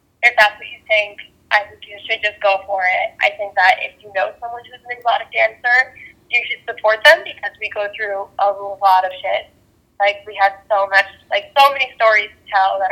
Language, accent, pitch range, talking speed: English, American, 200-250 Hz, 225 wpm